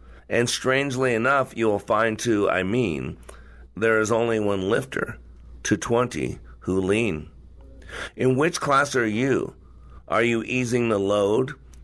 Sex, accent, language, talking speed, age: male, American, English, 140 wpm, 50-69